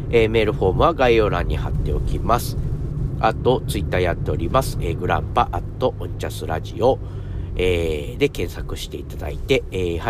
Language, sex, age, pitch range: Japanese, male, 50-69, 80-115 Hz